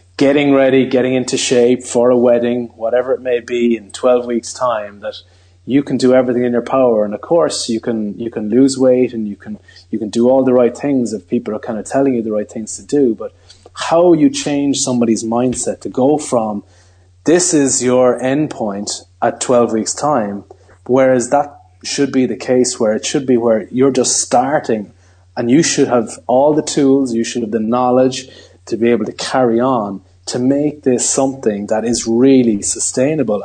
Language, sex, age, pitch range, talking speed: English, male, 30-49, 110-135 Hz, 205 wpm